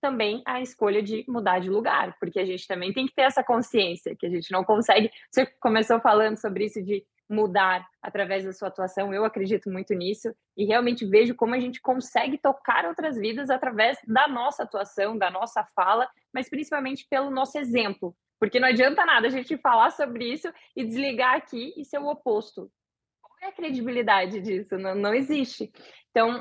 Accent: Brazilian